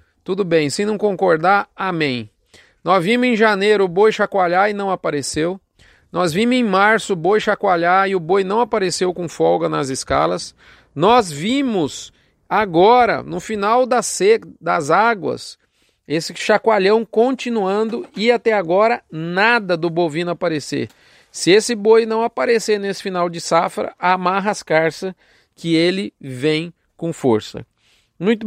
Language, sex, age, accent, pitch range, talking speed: Portuguese, male, 40-59, Brazilian, 170-220 Hz, 140 wpm